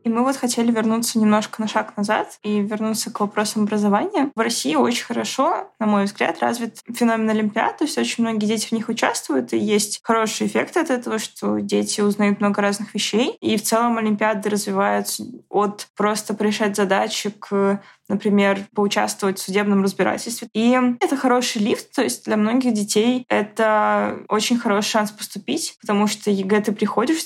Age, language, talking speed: 20-39, Russian, 170 wpm